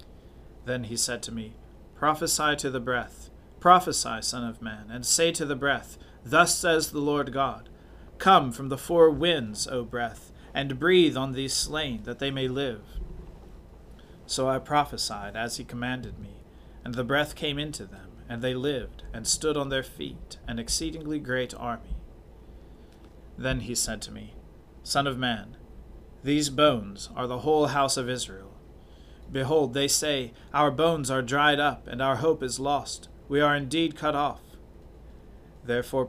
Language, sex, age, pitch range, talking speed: English, male, 40-59, 115-145 Hz, 165 wpm